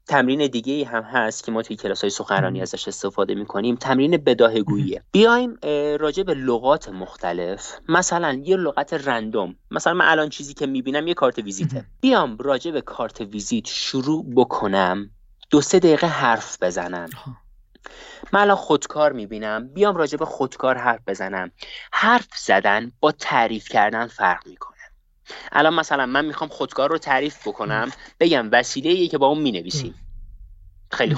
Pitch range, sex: 110-165 Hz, male